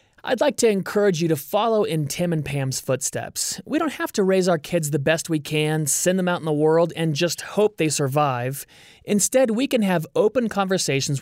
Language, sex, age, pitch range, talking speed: English, male, 30-49, 145-195 Hz, 215 wpm